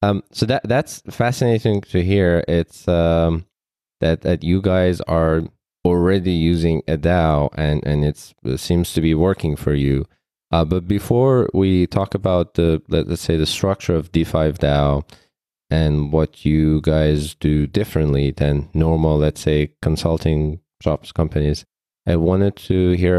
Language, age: English, 20-39